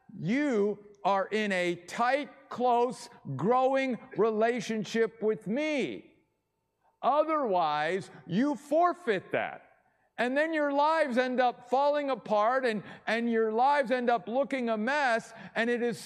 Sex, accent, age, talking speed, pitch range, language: male, American, 50-69, 125 wpm, 185-250 Hz, English